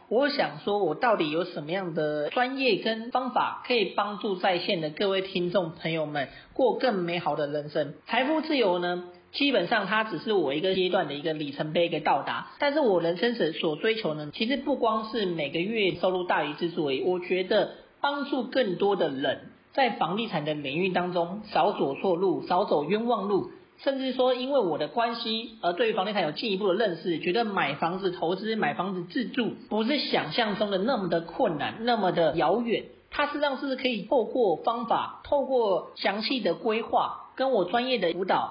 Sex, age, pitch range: male, 40-59, 175-245 Hz